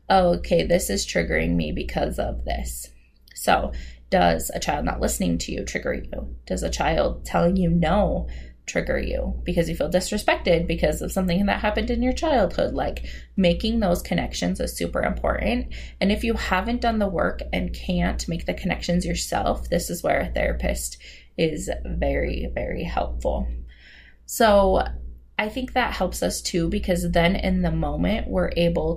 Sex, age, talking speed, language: female, 20-39, 170 wpm, English